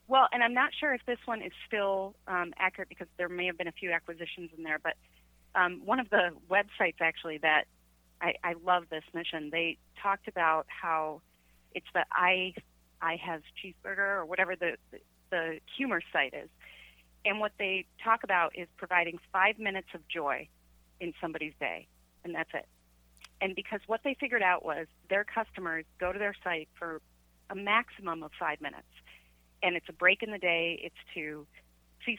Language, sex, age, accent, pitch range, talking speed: English, female, 30-49, American, 155-195 Hz, 185 wpm